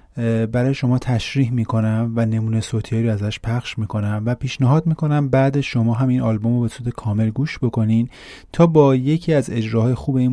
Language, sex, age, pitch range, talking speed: Persian, male, 30-49, 105-125 Hz, 175 wpm